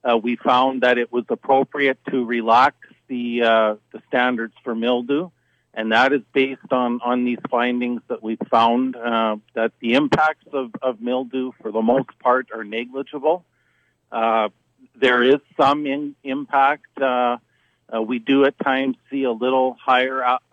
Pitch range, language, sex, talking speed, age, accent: 115-130 Hz, English, male, 160 wpm, 50-69, American